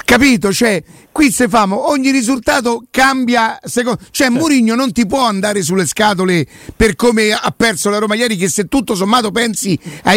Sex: male